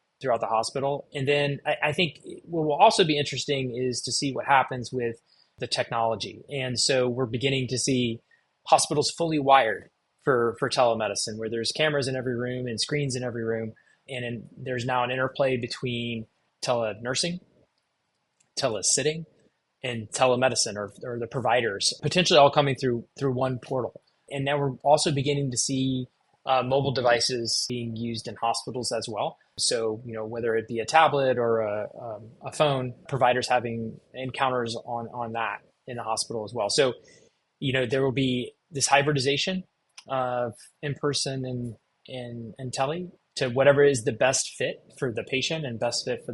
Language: English